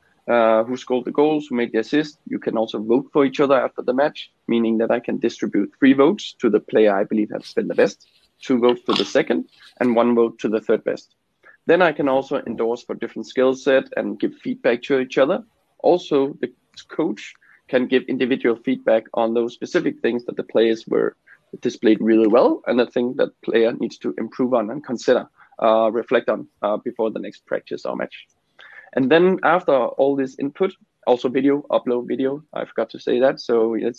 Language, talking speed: English, 210 wpm